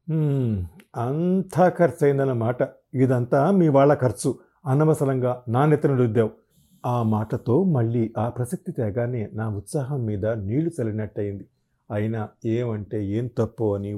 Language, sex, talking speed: Telugu, male, 120 wpm